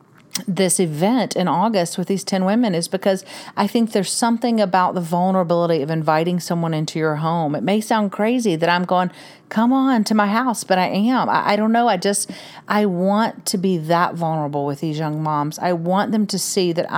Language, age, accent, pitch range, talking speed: English, 40-59, American, 175-205 Hz, 210 wpm